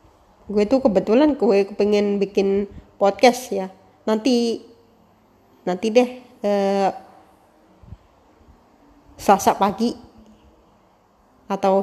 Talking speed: 75 wpm